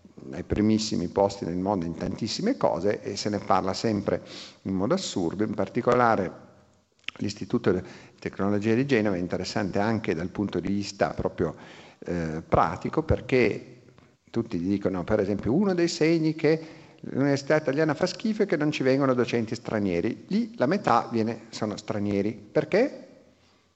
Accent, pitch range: native, 100-130 Hz